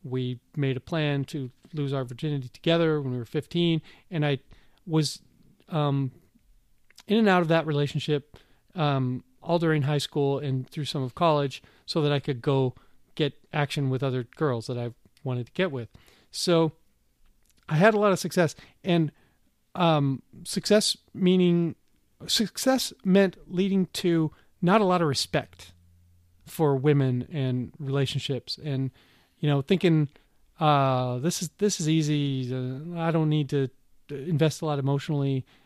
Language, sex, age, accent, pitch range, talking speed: English, male, 40-59, American, 135-180 Hz, 155 wpm